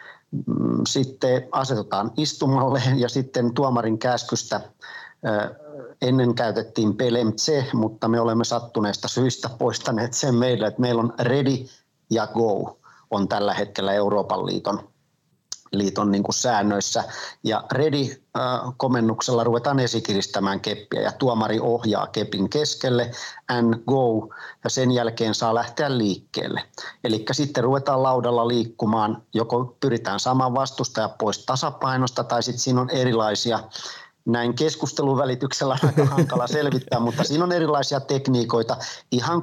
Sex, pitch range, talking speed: male, 115-135 Hz, 125 wpm